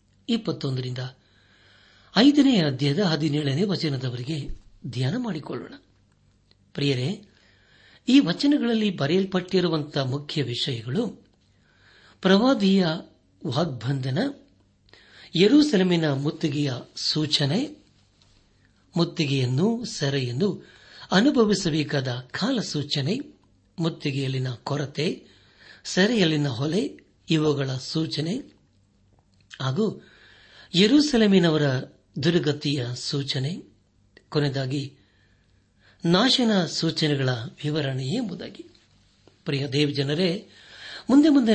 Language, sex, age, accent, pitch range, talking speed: Kannada, male, 60-79, native, 130-180 Hz, 65 wpm